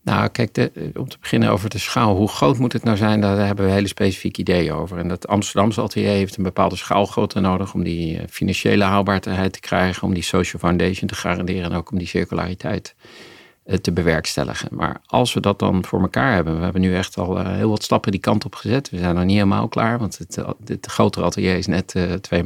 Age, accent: 50-69, Dutch